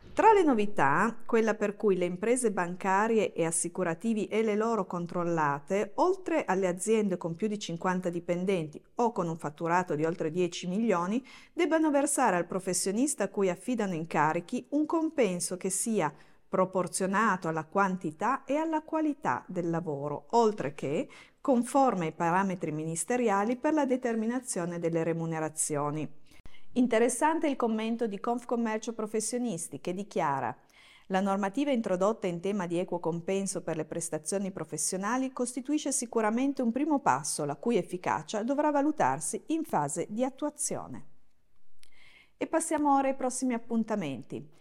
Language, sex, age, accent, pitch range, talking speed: Italian, female, 50-69, native, 170-255 Hz, 135 wpm